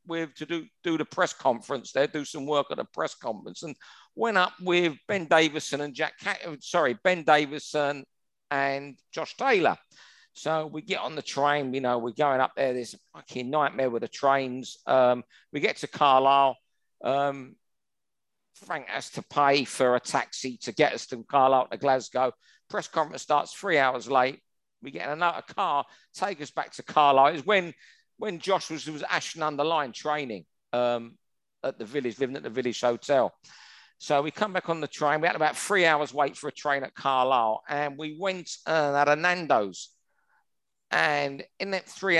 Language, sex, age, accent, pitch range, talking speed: English, male, 50-69, British, 130-165 Hz, 185 wpm